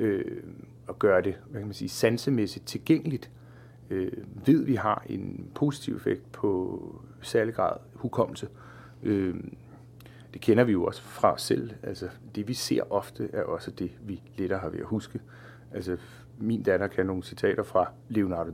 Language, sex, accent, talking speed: Danish, male, native, 160 wpm